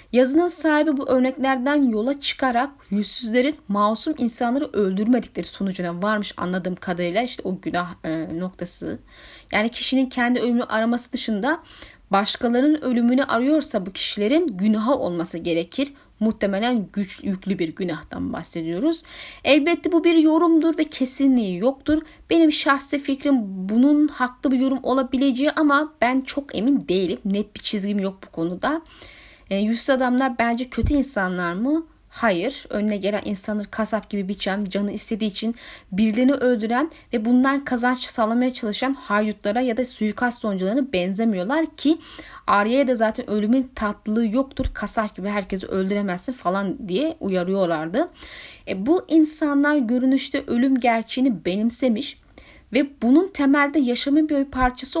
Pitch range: 205-275 Hz